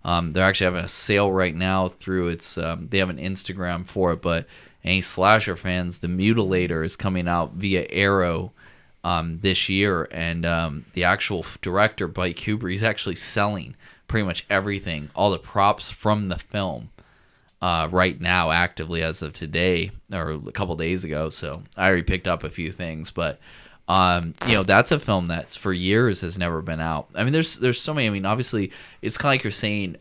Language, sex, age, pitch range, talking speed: English, male, 20-39, 85-105 Hz, 200 wpm